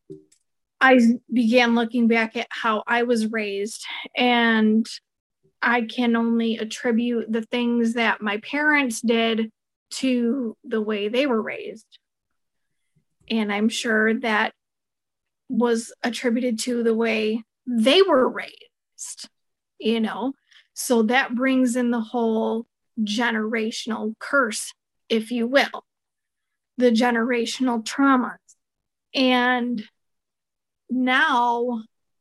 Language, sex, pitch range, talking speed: English, female, 225-250 Hz, 105 wpm